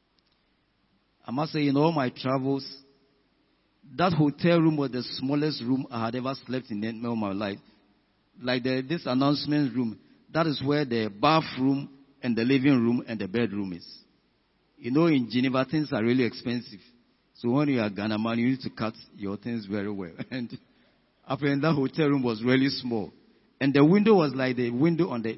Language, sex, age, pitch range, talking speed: English, male, 50-69, 110-145 Hz, 185 wpm